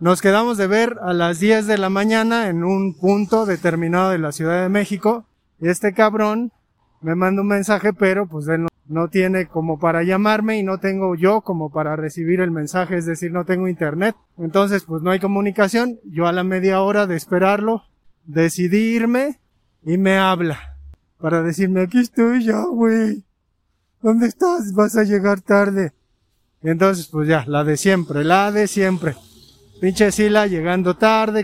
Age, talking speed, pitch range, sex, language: 30-49, 175 wpm, 165-210 Hz, male, Spanish